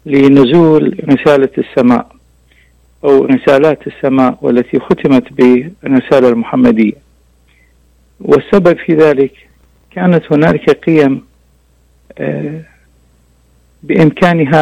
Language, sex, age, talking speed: Arabic, male, 50-69, 70 wpm